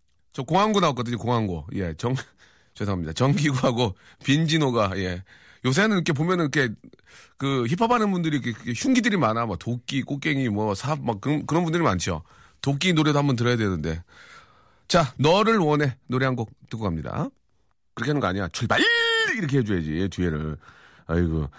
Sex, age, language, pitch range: male, 40-59, Korean, 95-150 Hz